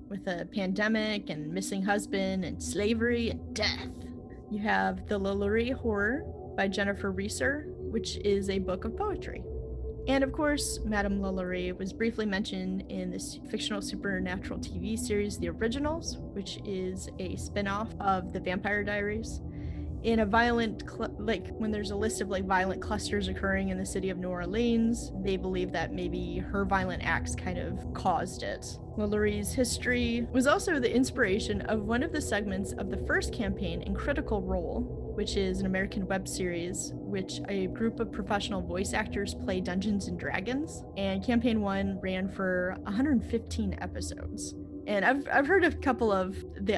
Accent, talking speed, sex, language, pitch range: American, 165 wpm, female, English, 170-225 Hz